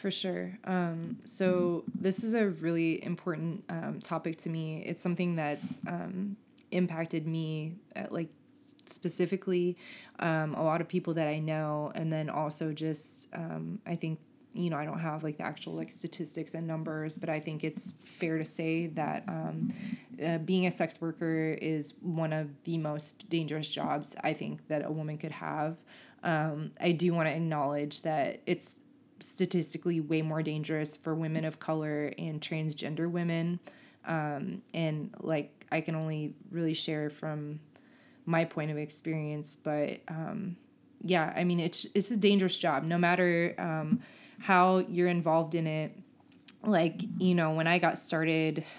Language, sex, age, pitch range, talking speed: English, female, 20-39, 155-180 Hz, 165 wpm